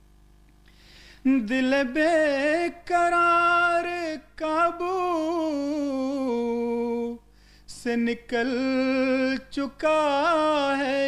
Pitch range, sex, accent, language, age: 175-265 Hz, male, Indian, English, 30-49